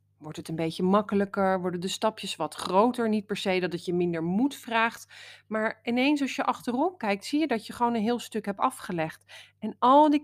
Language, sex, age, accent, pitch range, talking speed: Dutch, female, 30-49, Dutch, 185-255 Hz, 225 wpm